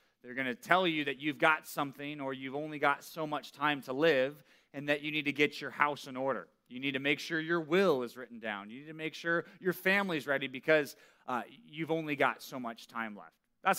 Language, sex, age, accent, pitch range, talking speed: English, male, 30-49, American, 130-165 Hz, 240 wpm